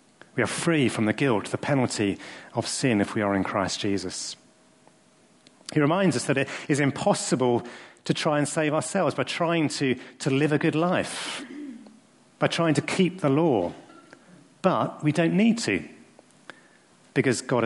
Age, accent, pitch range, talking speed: 40-59, British, 105-150 Hz, 165 wpm